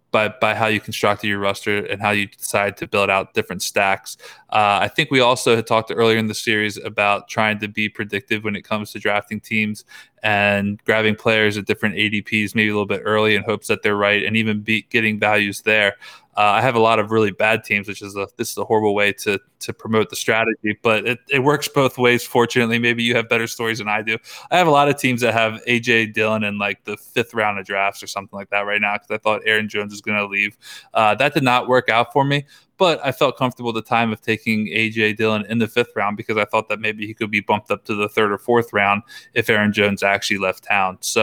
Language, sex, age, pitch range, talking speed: English, male, 20-39, 105-115 Hz, 255 wpm